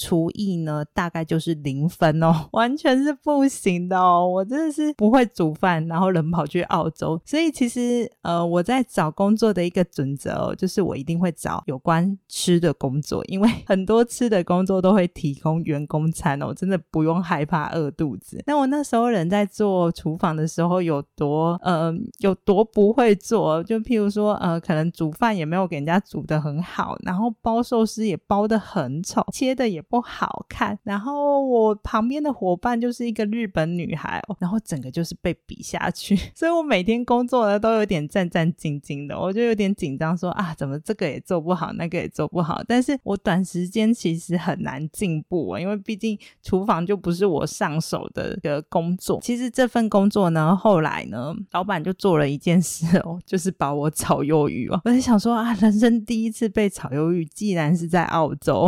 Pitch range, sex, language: 165-220 Hz, female, Chinese